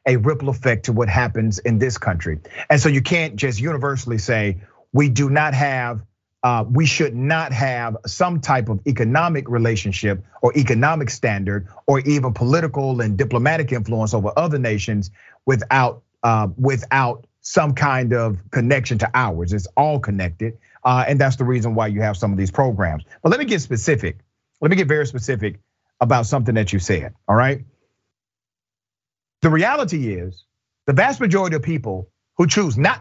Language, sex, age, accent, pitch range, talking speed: English, male, 40-59, American, 110-150 Hz, 170 wpm